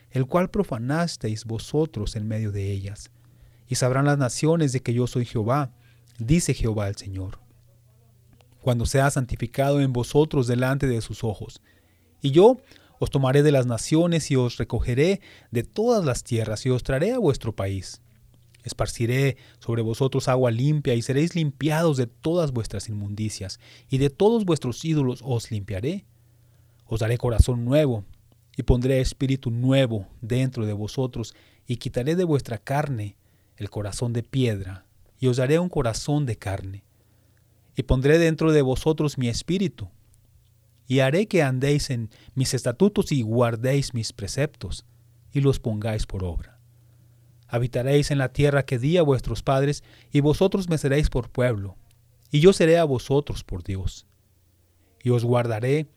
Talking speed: 155 wpm